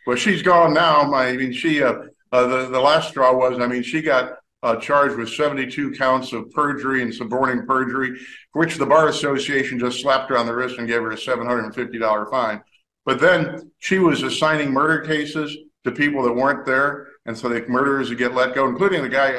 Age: 50-69